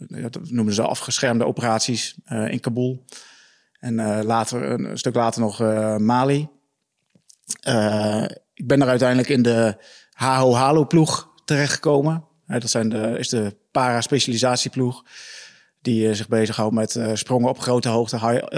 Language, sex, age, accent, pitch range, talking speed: Dutch, male, 30-49, Dutch, 115-135 Hz, 145 wpm